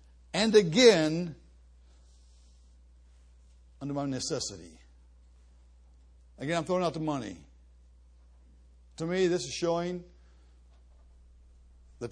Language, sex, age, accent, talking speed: English, male, 60-79, American, 85 wpm